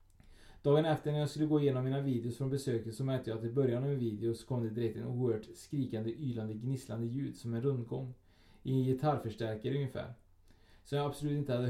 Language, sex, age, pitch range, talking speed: Swedish, male, 20-39, 110-140 Hz, 215 wpm